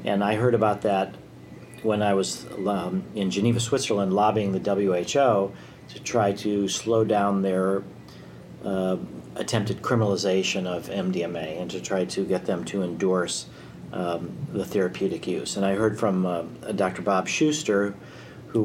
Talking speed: 150 wpm